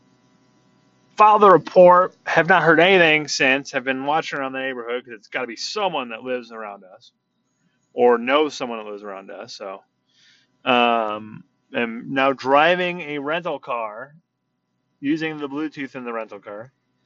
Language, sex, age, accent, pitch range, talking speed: English, male, 30-49, American, 125-160 Hz, 160 wpm